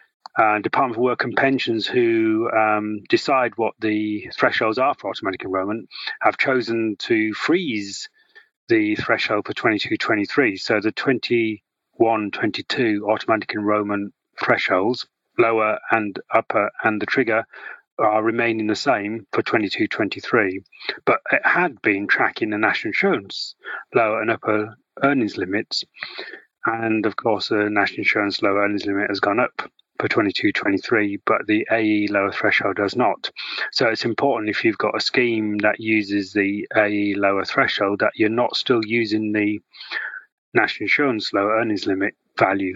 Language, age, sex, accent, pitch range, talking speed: English, 30-49, male, British, 105-120 Hz, 145 wpm